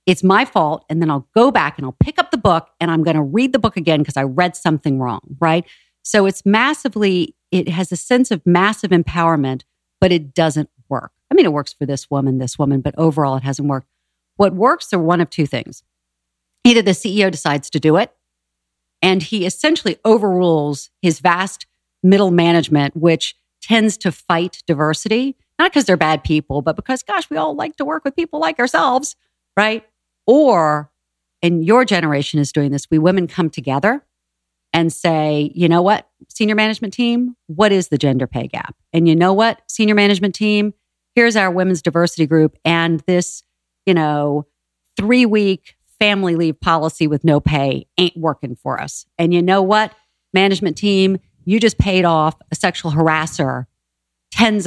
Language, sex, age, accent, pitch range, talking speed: English, female, 50-69, American, 150-205 Hz, 185 wpm